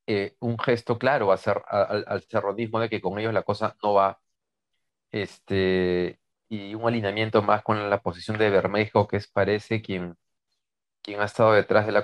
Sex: male